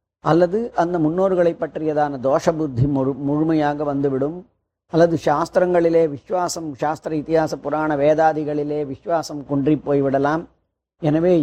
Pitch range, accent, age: 145-170 Hz, native, 40-59